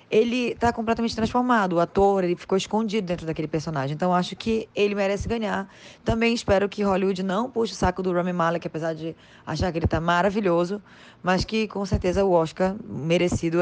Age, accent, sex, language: 20-39, Brazilian, female, Portuguese